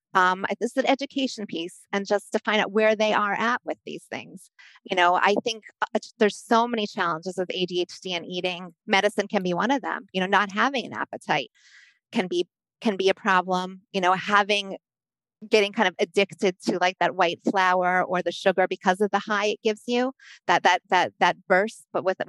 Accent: American